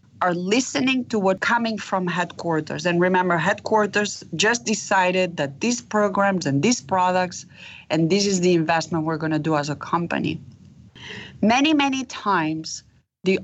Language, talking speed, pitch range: English, 150 wpm, 165-205 Hz